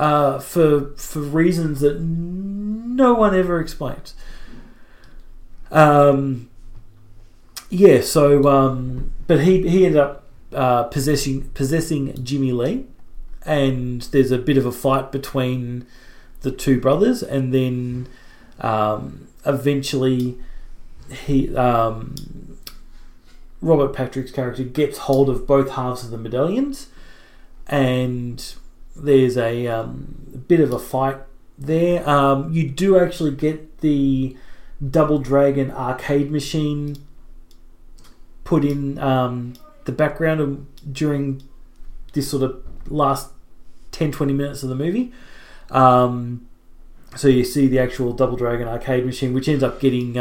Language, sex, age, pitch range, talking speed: English, male, 30-49, 125-145 Hz, 120 wpm